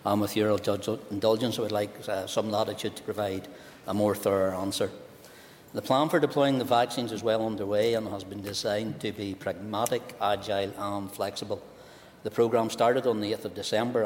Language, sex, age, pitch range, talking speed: English, male, 60-79, 100-110 Hz, 170 wpm